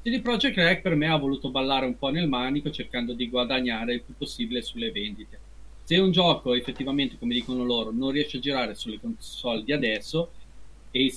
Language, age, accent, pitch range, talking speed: Italian, 40-59, native, 125-185 Hz, 195 wpm